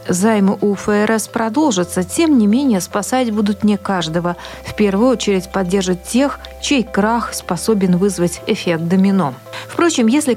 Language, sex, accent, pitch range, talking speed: Russian, female, native, 185-230 Hz, 140 wpm